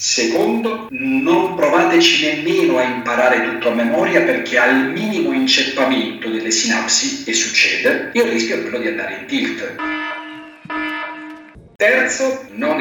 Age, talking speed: 40-59, 125 wpm